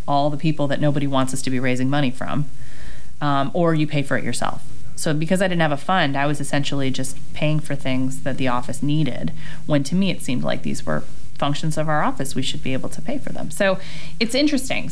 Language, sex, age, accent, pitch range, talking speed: English, female, 30-49, American, 135-170 Hz, 240 wpm